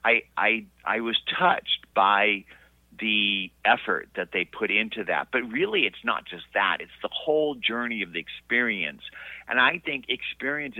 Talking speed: 165 wpm